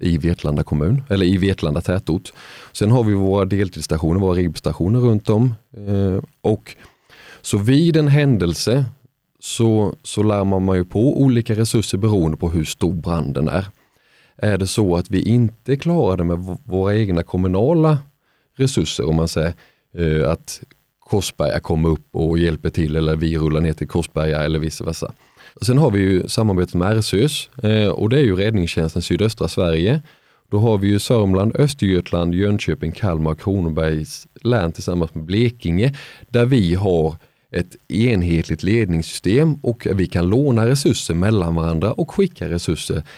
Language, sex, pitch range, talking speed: Swedish, male, 85-120 Hz, 150 wpm